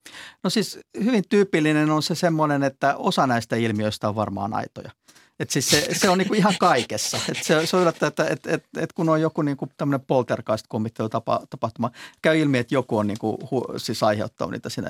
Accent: native